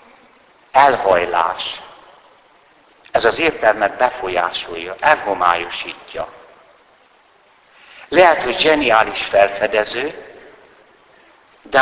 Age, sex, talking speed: 60-79, male, 55 wpm